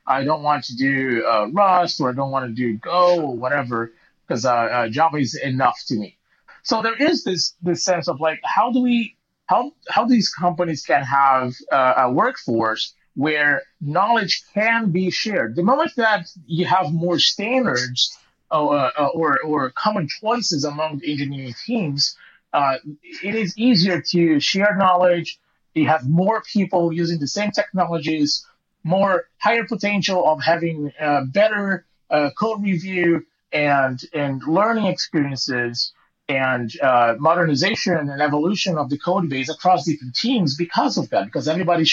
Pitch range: 145-200 Hz